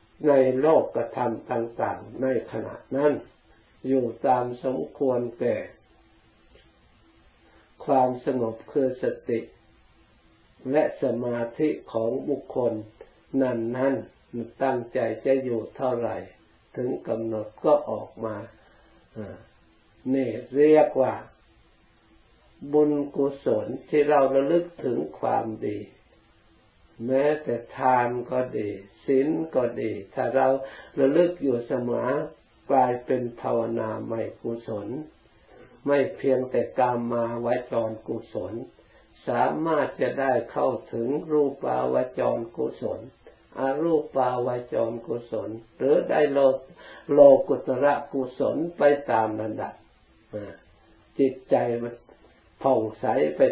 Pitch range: 115-135 Hz